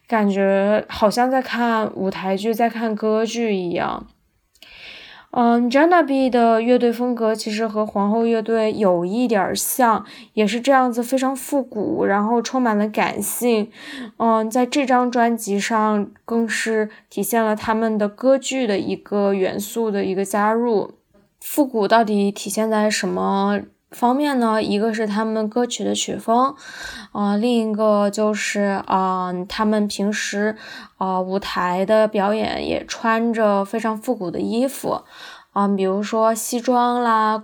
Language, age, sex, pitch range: Chinese, 10-29, female, 205-235 Hz